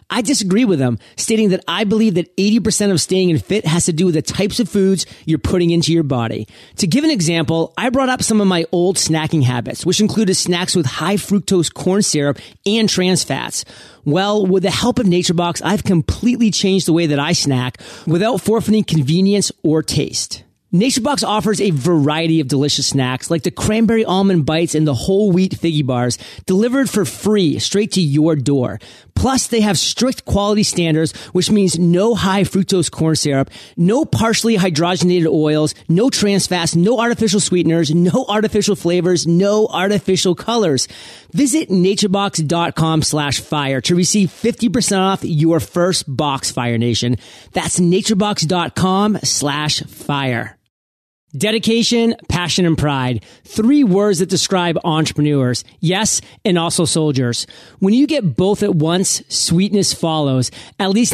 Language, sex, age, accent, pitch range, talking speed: English, male, 30-49, American, 155-205 Hz, 160 wpm